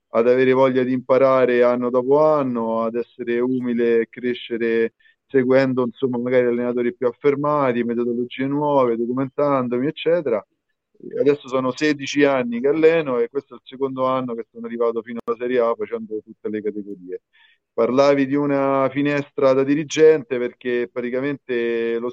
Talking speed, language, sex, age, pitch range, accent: 150 wpm, Italian, male, 30-49, 115-135 Hz, native